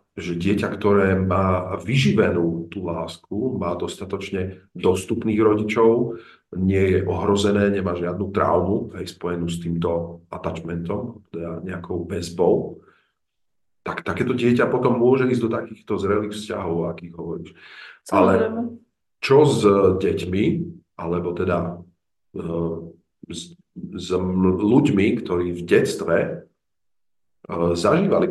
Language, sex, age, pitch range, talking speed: Slovak, male, 40-59, 85-105 Hz, 105 wpm